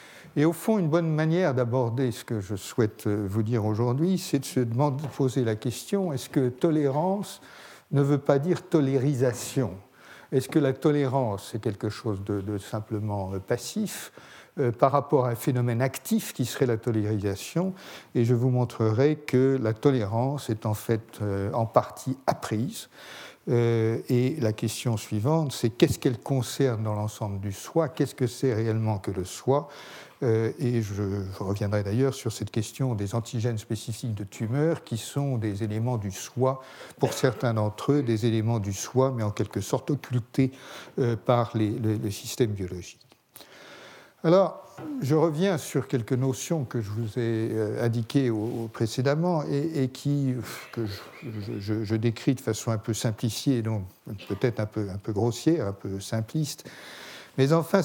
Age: 60-79